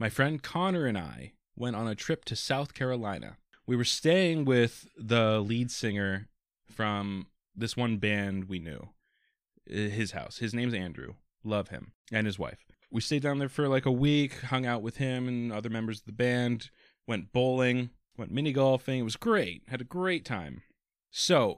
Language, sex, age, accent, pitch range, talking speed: English, male, 20-39, American, 105-135 Hz, 185 wpm